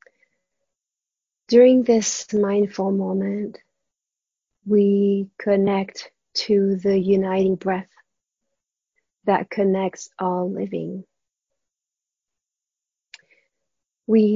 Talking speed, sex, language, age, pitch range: 65 wpm, female, English, 30-49, 185-210 Hz